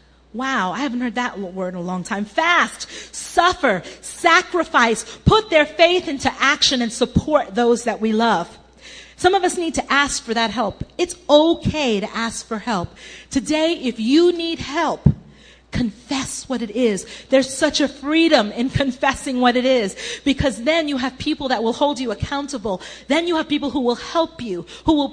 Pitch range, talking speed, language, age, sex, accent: 230-295 Hz, 185 wpm, English, 40-59, female, American